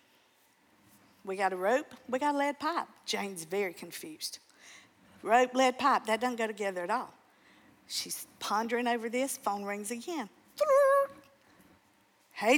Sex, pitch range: female, 205-275 Hz